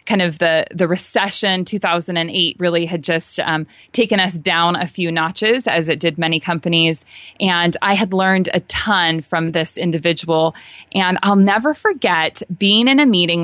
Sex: female